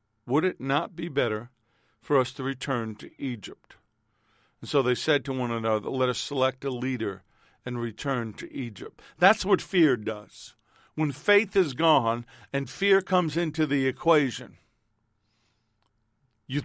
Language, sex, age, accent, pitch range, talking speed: English, male, 50-69, American, 115-160 Hz, 150 wpm